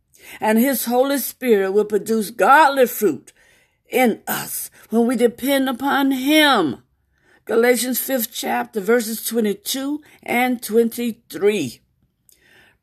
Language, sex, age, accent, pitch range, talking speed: English, female, 50-69, American, 200-260 Hz, 105 wpm